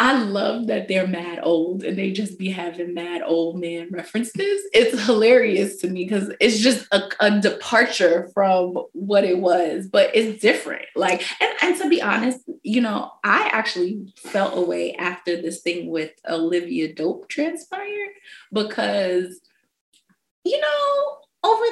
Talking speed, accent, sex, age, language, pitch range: 150 wpm, American, female, 20-39, English, 175-240 Hz